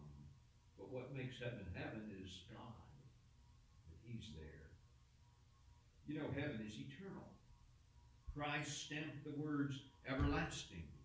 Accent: American